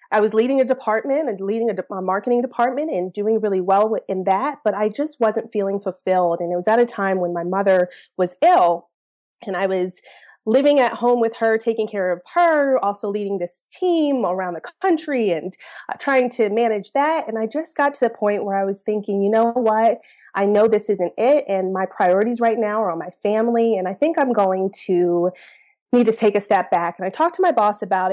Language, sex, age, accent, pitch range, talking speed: English, female, 30-49, American, 195-260 Hz, 220 wpm